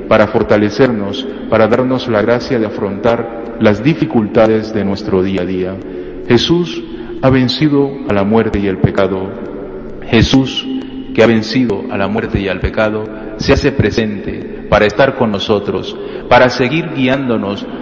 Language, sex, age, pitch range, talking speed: Spanish, male, 40-59, 100-125 Hz, 150 wpm